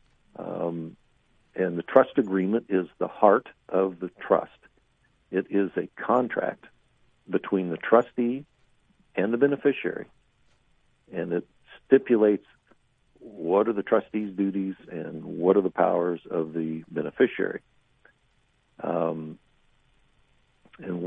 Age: 60-79